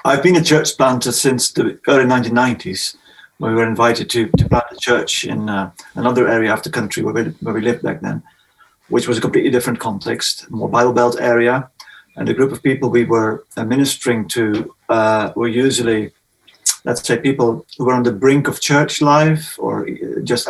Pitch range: 120-135 Hz